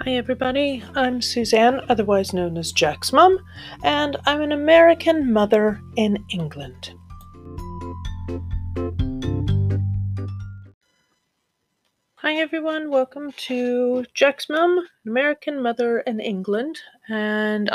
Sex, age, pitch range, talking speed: female, 40-59, 180-245 Hz, 90 wpm